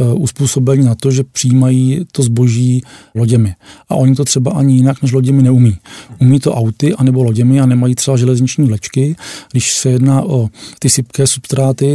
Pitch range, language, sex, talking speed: 125-135 Hz, Czech, male, 170 wpm